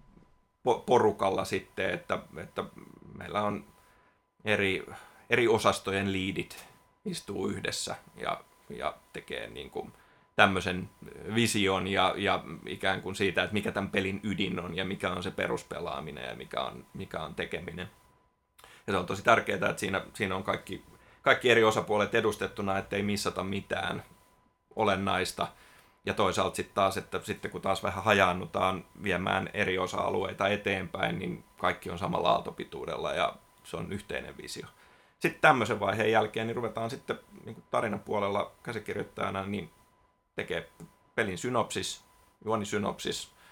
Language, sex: Finnish, male